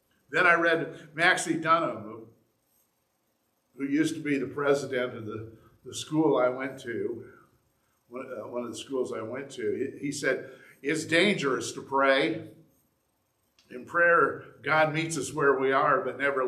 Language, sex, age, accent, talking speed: English, male, 50-69, American, 145 wpm